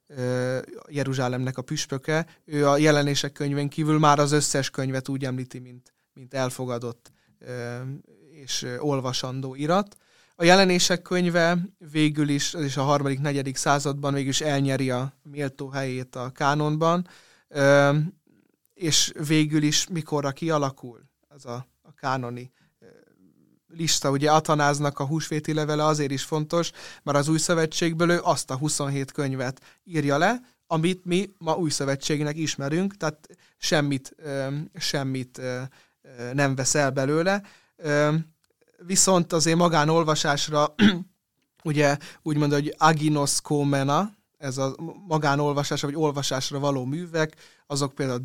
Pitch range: 135-155 Hz